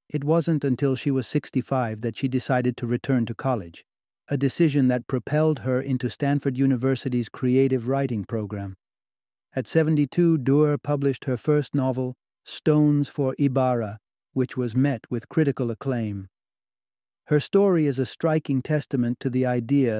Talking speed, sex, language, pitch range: 145 wpm, male, English, 120-145 Hz